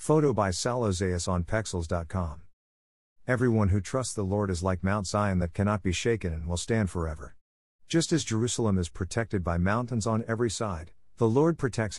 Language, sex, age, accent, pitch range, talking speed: English, male, 50-69, American, 85-115 Hz, 180 wpm